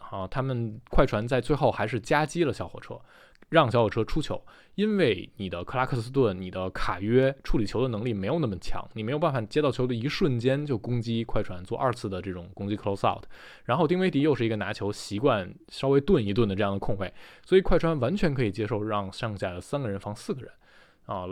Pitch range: 105-150 Hz